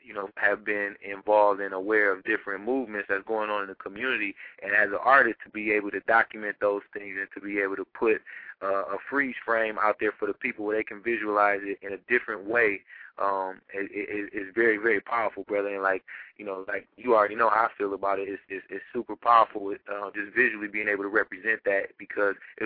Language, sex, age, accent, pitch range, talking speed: English, male, 20-39, American, 100-110 Hz, 225 wpm